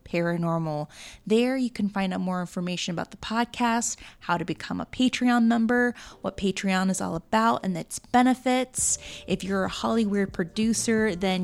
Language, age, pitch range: English, 20-39, 170-220 Hz